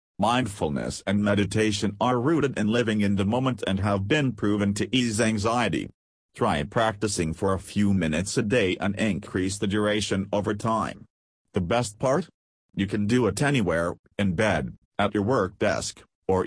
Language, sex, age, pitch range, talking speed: English, male, 40-59, 95-115 Hz, 170 wpm